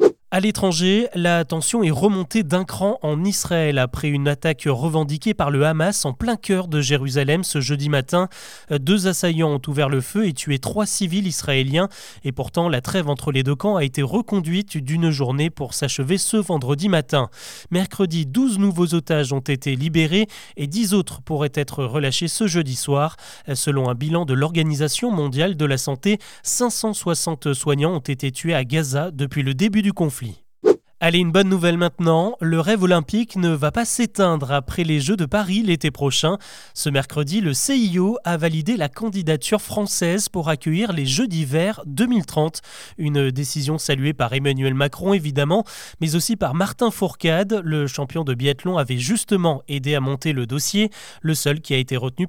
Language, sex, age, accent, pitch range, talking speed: French, male, 20-39, French, 145-190 Hz, 175 wpm